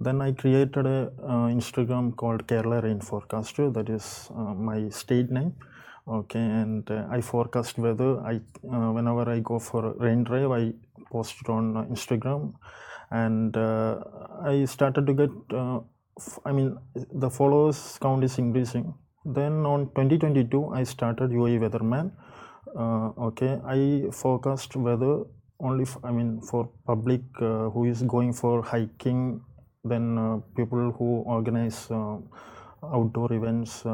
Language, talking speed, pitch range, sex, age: Arabic, 150 wpm, 115-135 Hz, male, 20-39